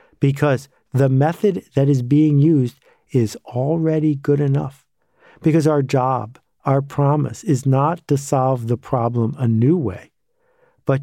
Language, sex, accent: English, male, American